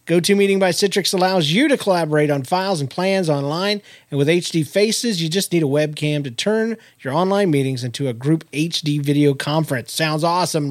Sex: male